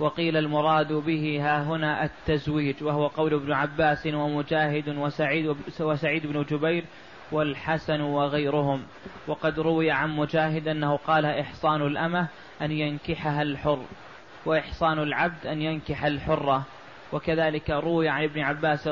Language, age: Arabic, 20-39